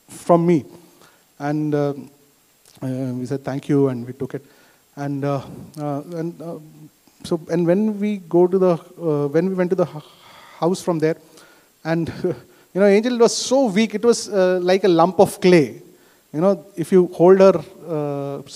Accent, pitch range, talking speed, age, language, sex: native, 150-185 Hz, 180 wpm, 30-49, Malayalam, male